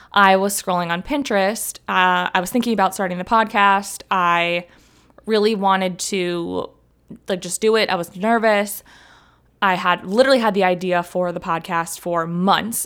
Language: English